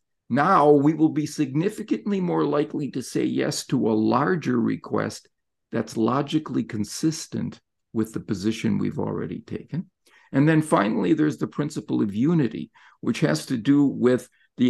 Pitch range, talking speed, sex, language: 120-160 Hz, 150 wpm, male, English